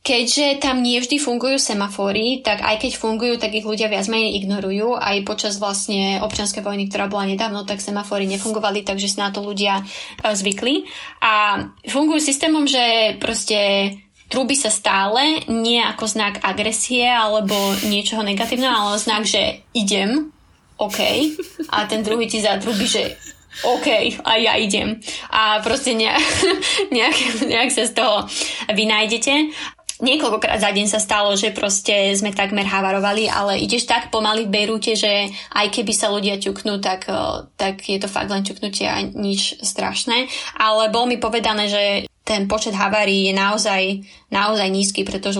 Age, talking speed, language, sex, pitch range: 20-39, 155 wpm, Slovak, female, 200-235 Hz